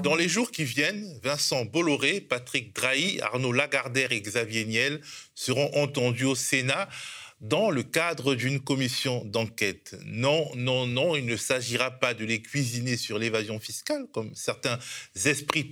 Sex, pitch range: male, 120-150 Hz